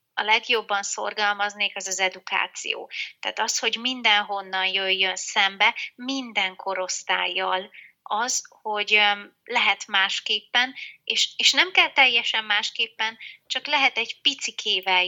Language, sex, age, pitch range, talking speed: Hungarian, female, 30-49, 195-235 Hz, 110 wpm